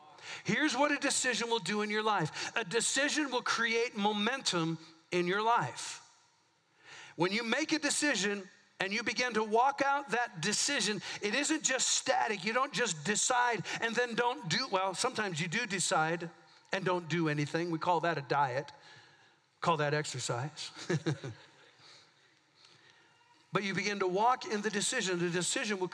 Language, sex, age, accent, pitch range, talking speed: English, male, 50-69, American, 175-240 Hz, 160 wpm